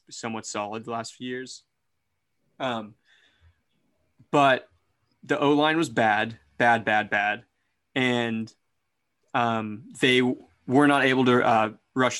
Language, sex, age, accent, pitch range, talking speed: English, male, 20-39, American, 115-130 Hz, 120 wpm